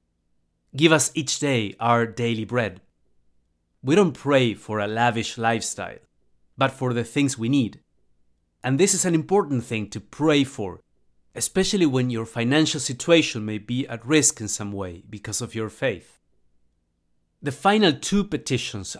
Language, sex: English, male